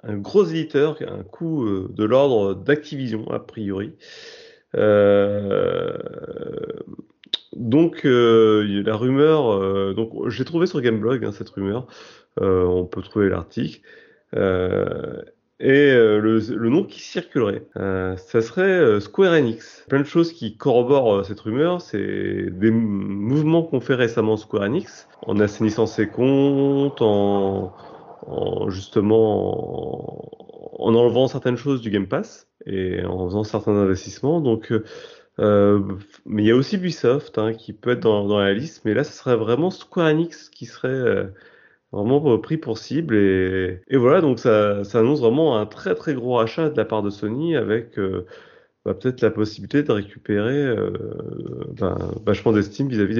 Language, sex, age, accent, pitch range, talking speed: French, male, 30-49, French, 105-140 Hz, 160 wpm